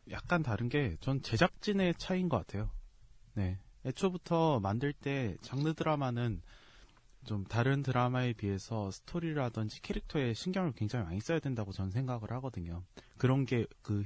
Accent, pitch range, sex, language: native, 105-160 Hz, male, Korean